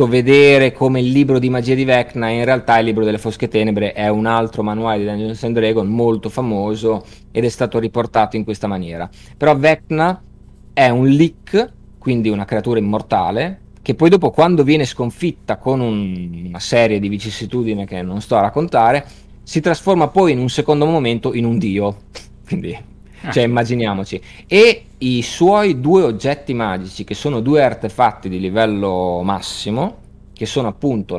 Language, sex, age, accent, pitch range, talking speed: Italian, male, 30-49, native, 105-145 Hz, 165 wpm